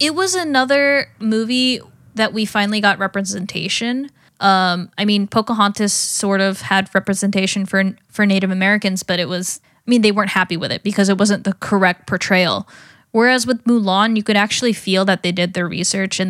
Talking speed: 185 wpm